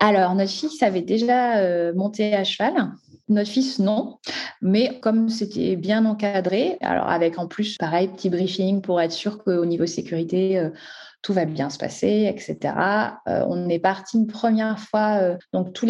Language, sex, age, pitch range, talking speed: French, female, 20-39, 175-220 Hz, 175 wpm